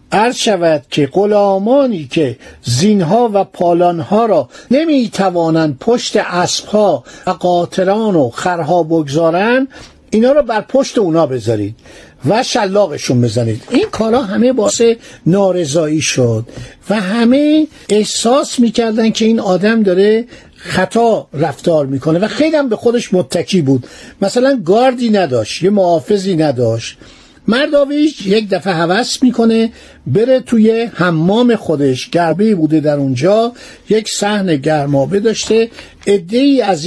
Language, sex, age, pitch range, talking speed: Persian, male, 50-69, 170-230 Hz, 125 wpm